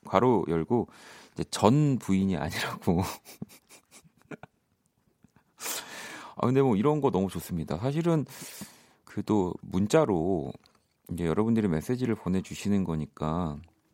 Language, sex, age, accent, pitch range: Korean, male, 40-59, native, 90-135 Hz